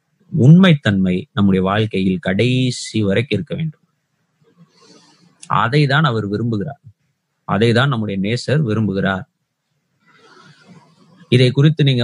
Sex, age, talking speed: male, 30-49, 85 wpm